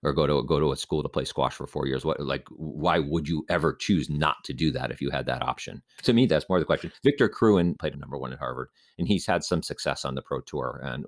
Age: 40-59